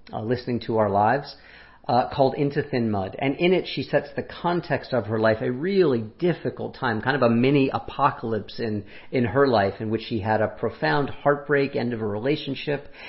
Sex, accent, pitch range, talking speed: male, American, 110-140 Hz, 200 wpm